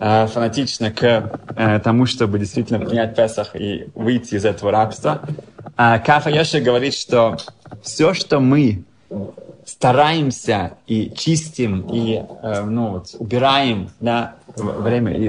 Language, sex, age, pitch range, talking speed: Russian, male, 20-39, 115-150 Hz, 115 wpm